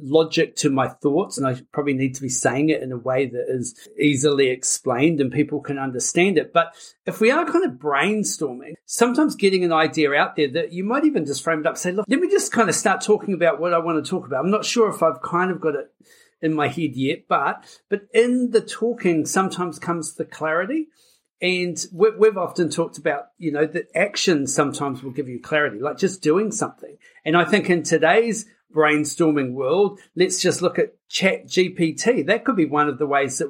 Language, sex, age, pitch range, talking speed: English, male, 40-59, 150-195 Hz, 220 wpm